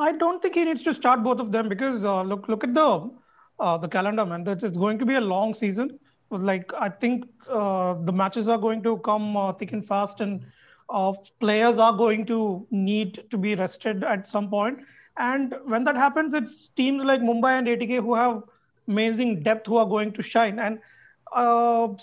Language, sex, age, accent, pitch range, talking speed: English, male, 30-49, Indian, 210-245 Hz, 205 wpm